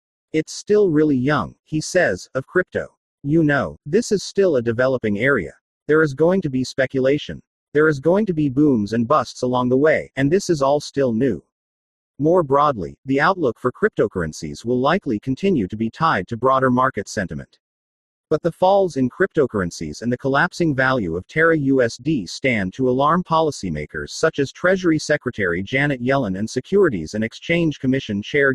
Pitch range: 115-155 Hz